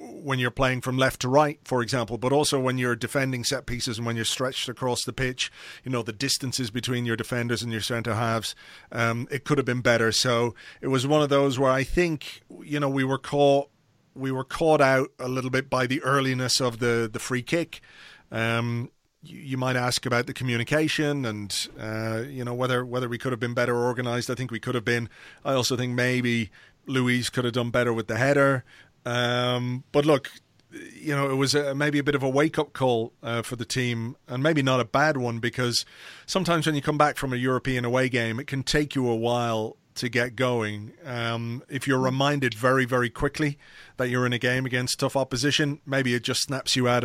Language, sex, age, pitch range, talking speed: English, male, 30-49, 120-140 Hz, 220 wpm